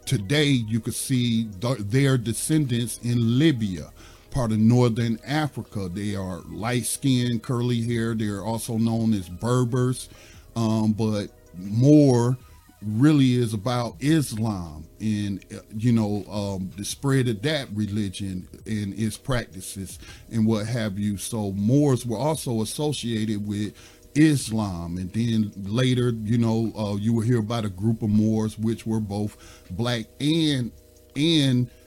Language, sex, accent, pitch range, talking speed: English, male, American, 100-120 Hz, 135 wpm